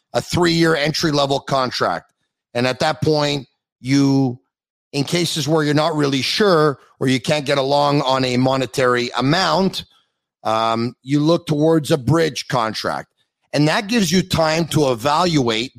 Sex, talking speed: male, 150 wpm